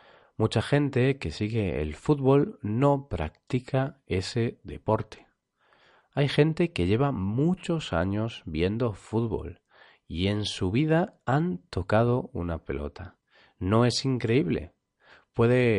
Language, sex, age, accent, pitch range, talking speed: Spanish, male, 40-59, Spanish, 90-130 Hz, 115 wpm